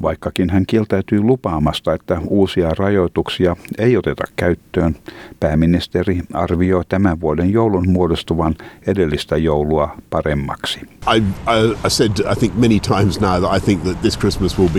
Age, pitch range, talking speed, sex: 60-79, 80-100 Hz, 75 wpm, male